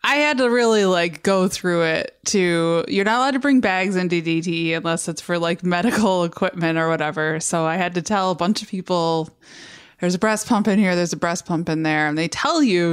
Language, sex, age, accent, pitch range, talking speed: English, female, 20-39, American, 170-230 Hz, 230 wpm